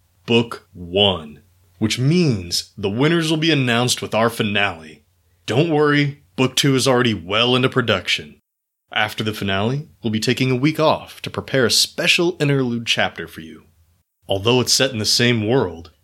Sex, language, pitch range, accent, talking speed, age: male, English, 100-130 Hz, American, 170 wpm, 30-49